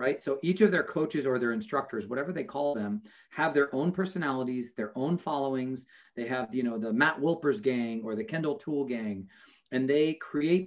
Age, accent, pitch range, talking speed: 40-59, American, 120-170 Hz, 200 wpm